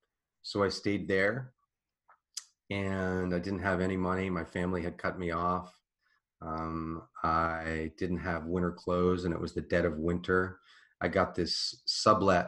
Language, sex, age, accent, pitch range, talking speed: English, male, 30-49, American, 85-90 Hz, 160 wpm